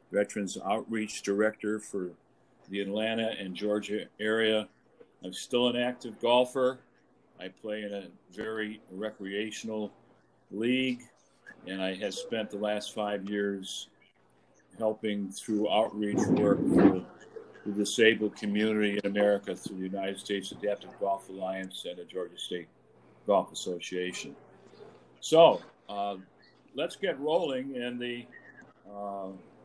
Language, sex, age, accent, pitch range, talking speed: English, male, 50-69, American, 100-120 Hz, 120 wpm